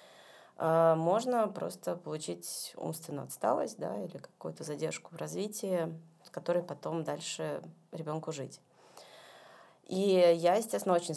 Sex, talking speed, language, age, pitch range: female, 105 wpm, Russian, 20-39, 155-175 Hz